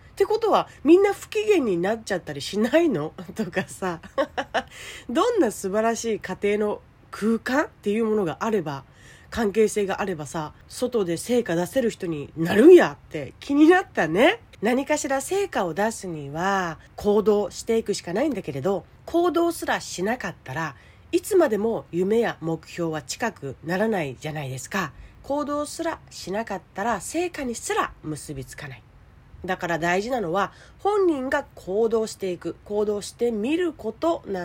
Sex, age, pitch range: female, 40-59, 165-270 Hz